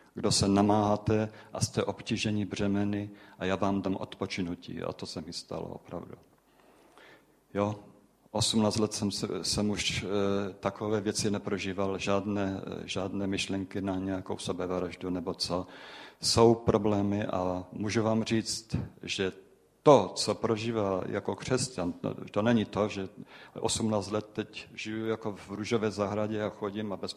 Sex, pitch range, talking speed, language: male, 95-110 Hz, 150 wpm, Czech